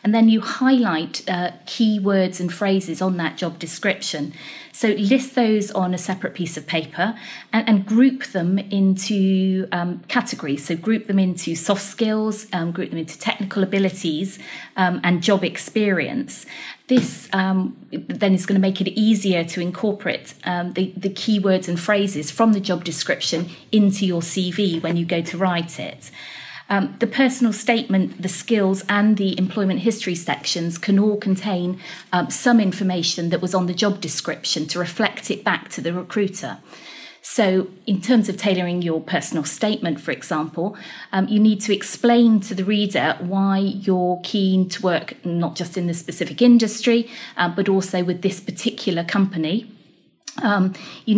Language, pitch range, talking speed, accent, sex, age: English, 175-210 Hz, 165 wpm, British, female, 30-49